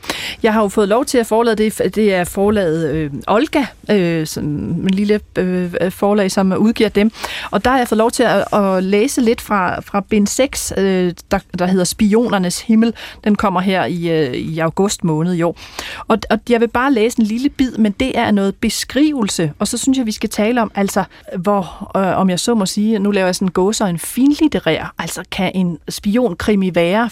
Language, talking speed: Danish, 215 wpm